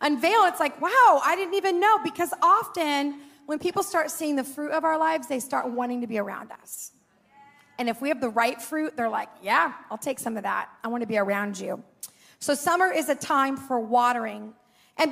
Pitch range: 250-345 Hz